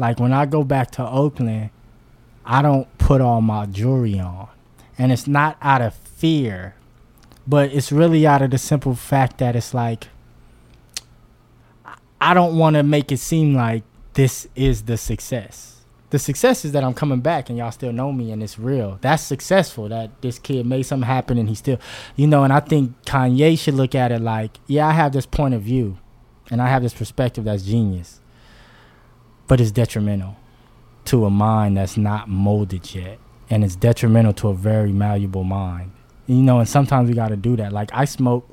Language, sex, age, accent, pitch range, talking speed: English, male, 20-39, American, 115-140 Hz, 190 wpm